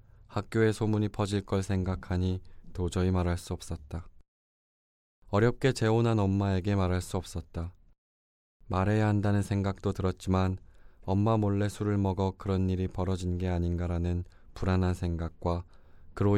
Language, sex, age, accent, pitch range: Korean, male, 20-39, native, 85-100 Hz